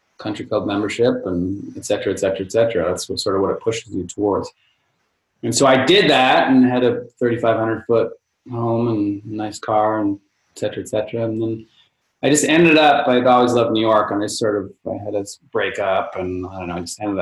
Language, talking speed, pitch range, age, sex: English, 225 wpm, 105-130 Hz, 30-49, male